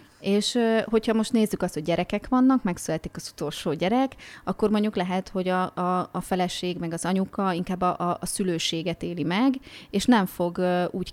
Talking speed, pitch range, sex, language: 185 wpm, 170-190 Hz, female, Hungarian